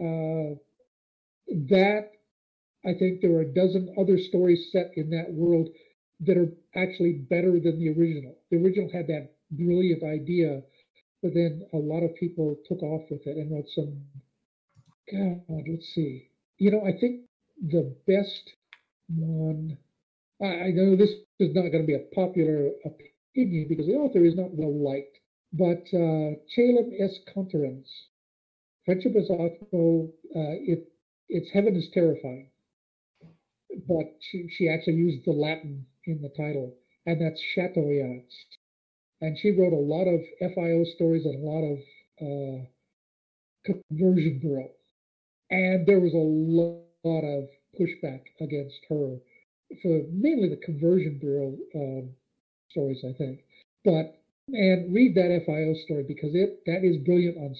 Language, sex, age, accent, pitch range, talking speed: English, male, 50-69, American, 150-185 Hz, 150 wpm